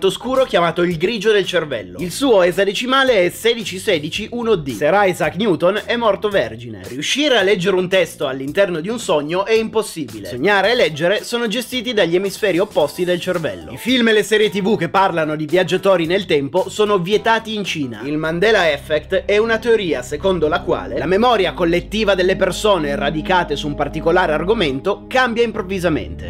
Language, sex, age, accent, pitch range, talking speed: Italian, male, 30-49, native, 180-225 Hz, 175 wpm